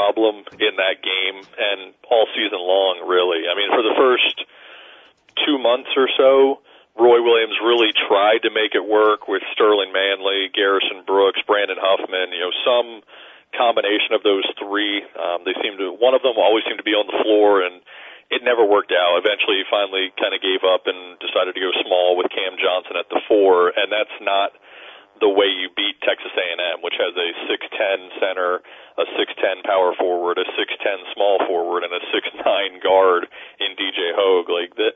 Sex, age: male, 40-59